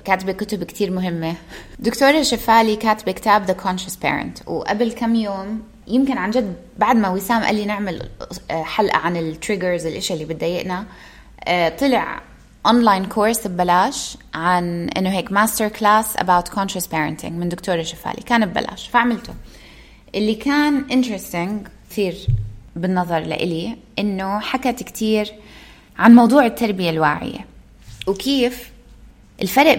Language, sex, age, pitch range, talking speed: Arabic, female, 20-39, 180-225 Hz, 125 wpm